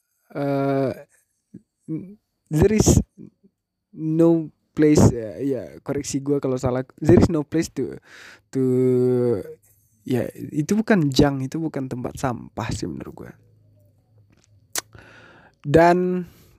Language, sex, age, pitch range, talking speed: Indonesian, male, 20-39, 115-140 Hz, 110 wpm